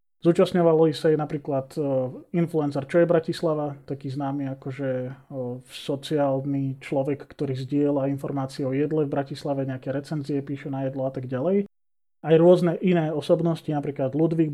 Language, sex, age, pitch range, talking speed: Slovak, male, 30-49, 140-170 Hz, 150 wpm